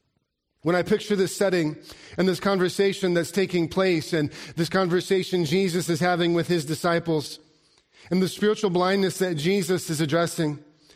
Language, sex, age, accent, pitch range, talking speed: English, male, 40-59, American, 160-190 Hz, 155 wpm